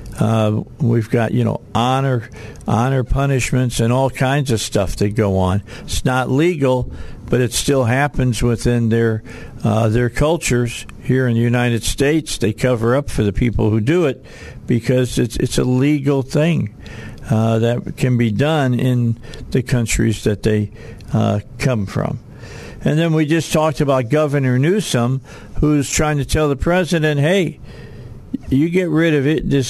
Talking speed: 165 wpm